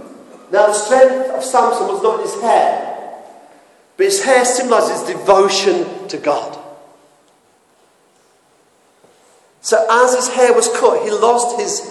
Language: English